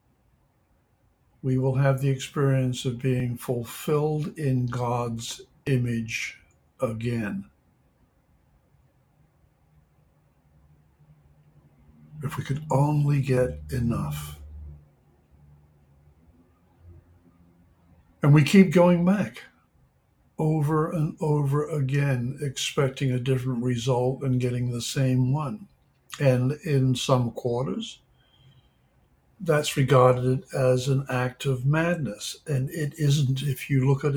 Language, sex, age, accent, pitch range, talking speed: English, male, 60-79, American, 110-140 Hz, 95 wpm